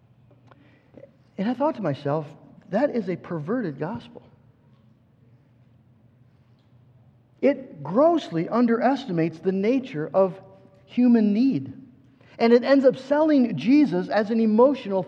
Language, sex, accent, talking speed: English, male, American, 105 wpm